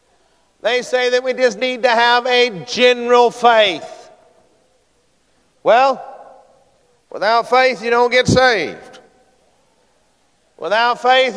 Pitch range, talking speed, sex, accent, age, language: 245-265 Hz, 105 wpm, male, American, 50-69, English